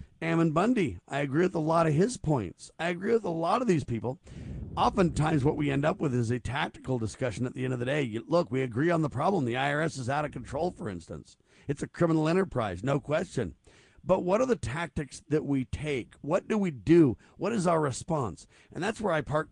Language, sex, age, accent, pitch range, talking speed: English, male, 50-69, American, 125-170 Hz, 235 wpm